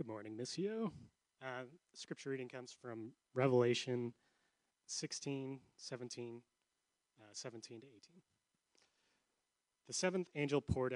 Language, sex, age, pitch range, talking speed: English, male, 30-49, 115-140 Hz, 105 wpm